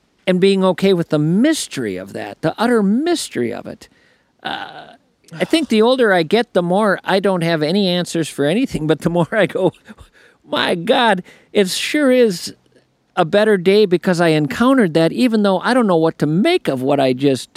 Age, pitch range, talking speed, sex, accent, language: 50-69, 145-215 Hz, 200 wpm, male, American, English